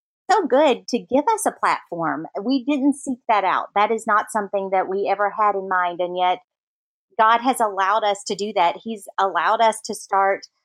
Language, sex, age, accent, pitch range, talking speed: English, female, 30-49, American, 200-250 Hz, 205 wpm